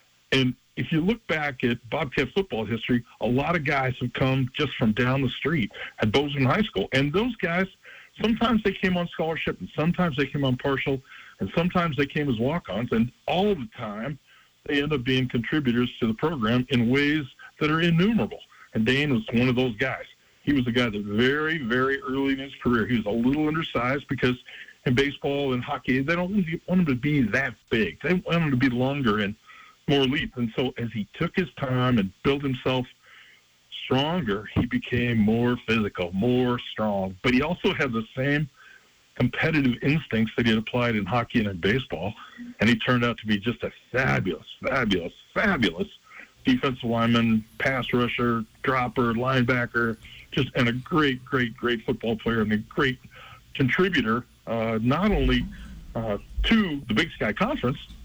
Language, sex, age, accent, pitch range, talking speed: English, male, 50-69, American, 120-150 Hz, 185 wpm